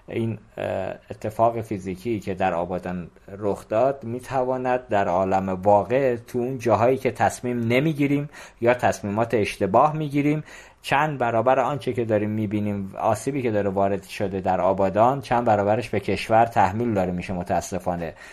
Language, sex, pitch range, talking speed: Persian, male, 100-125 Hz, 155 wpm